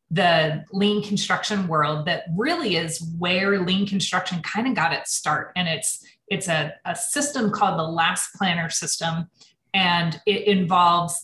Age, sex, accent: 30-49, female, American